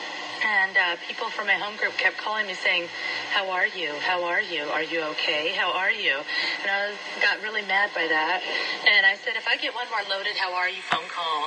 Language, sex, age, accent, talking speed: English, female, 30-49, American, 235 wpm